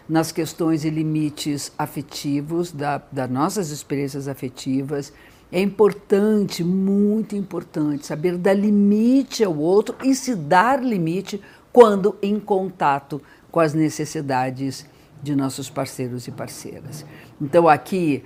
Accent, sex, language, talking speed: Brazilian, female, Portuguese, 120 wpm